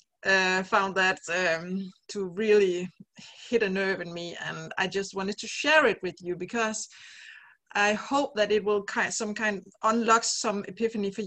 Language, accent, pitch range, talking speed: English, Danish, 180-220 Hz, 175 wpm